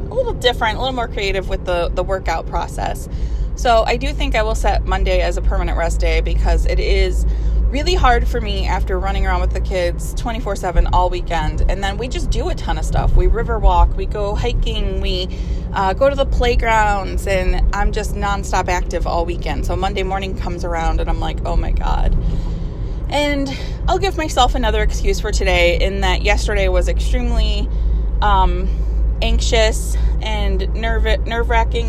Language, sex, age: English, female, 20-39